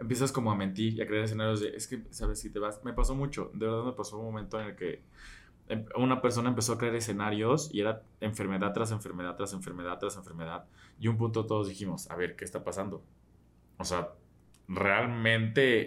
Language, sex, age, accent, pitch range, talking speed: Spanish, male, 20-39, Mexican, 100-135 Hz, 210 wpm